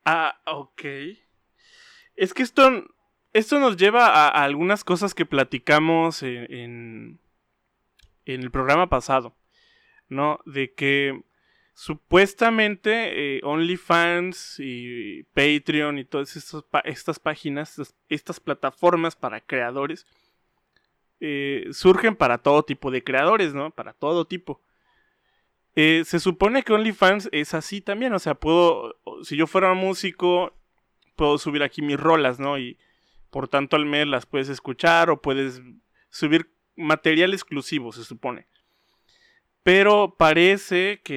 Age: 20-39